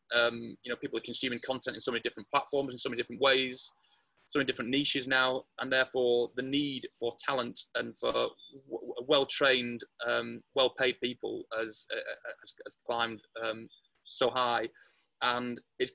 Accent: British